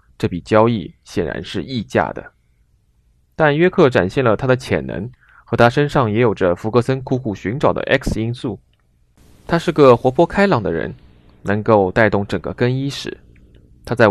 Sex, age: male, 20-39